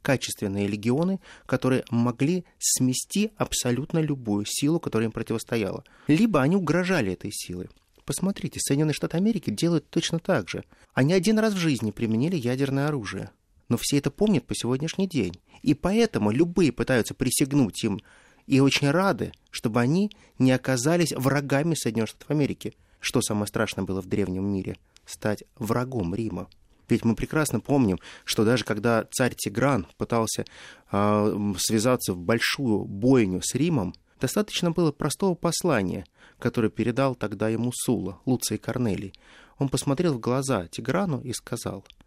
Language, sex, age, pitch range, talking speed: Russian, male, 30-49, 105-145 Hz, 145 wpm